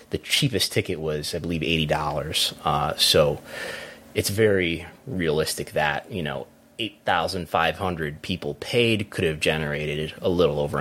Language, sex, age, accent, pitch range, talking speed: English, male, 30-49, American, 75-105 Hz, 155 wpm